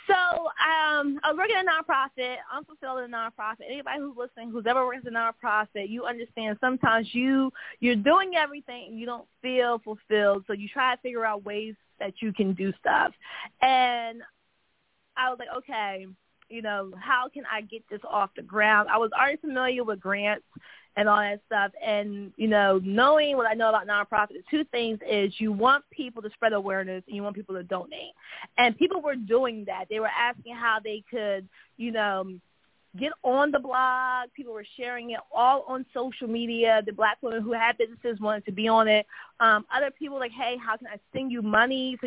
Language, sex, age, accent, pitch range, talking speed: English, female, 20-39, American, 205-250 Hz, 205 wpm